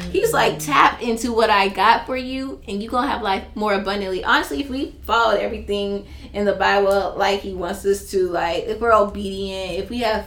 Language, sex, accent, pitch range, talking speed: English, female, American, 200-245 Hz, 210 wpm